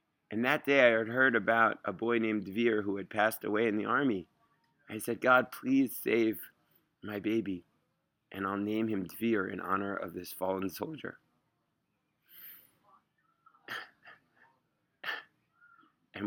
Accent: American